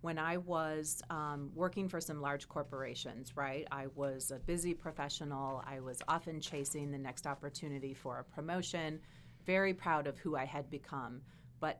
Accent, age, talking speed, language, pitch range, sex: American, 30-49, 170 wpm, English, 135-155 Hz, female